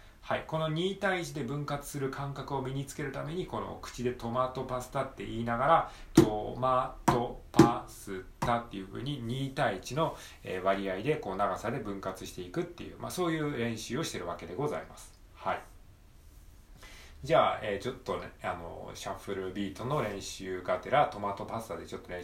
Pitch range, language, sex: 95-130 Hz, Japanese, male